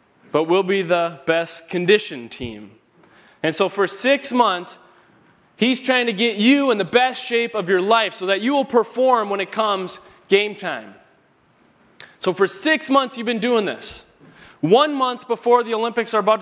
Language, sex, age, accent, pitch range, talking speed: English, male, 20-39, American, 195-245 Hz, 180 wpm